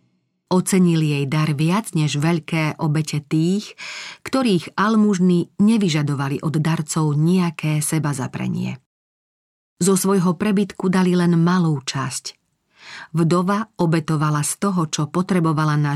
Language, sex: Slovak, female